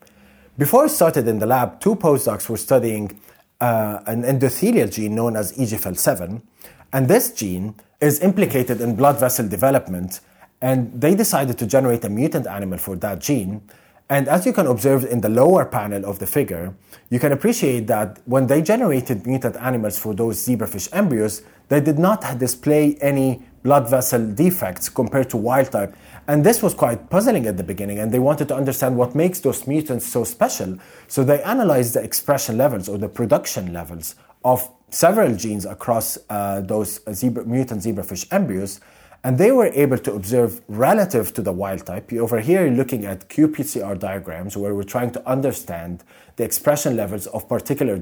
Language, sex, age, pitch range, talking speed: English, male, 30-49, 105-140 Hz, 175 wpm